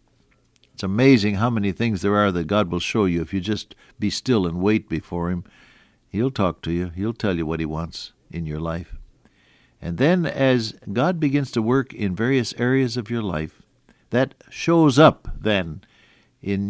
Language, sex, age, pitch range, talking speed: English, male, 60-79, 85-125 Hz, 185 wpm